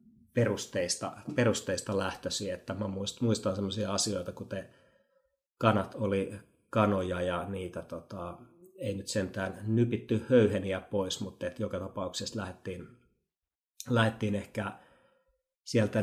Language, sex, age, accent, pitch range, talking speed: Finnish, male, 30-49, native, 95-115 Hz, 110 wpm